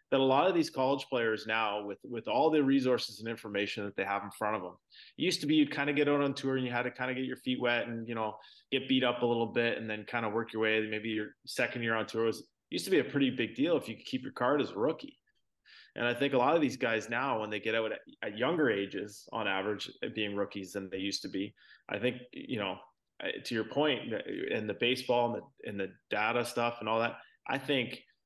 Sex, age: male, 20-39